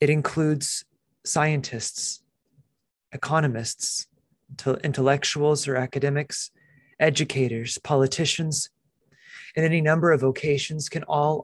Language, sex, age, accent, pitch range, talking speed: English, male, 30-49, American, 130-150 Hz, 85 wpm